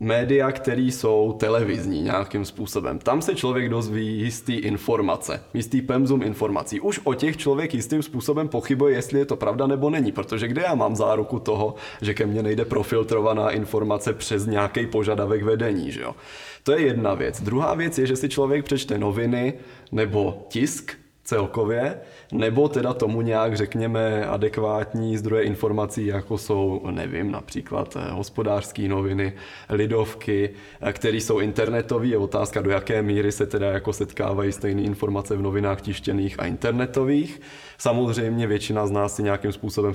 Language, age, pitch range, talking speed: Czech, 20-39, 105-130 Hz, 155 wpm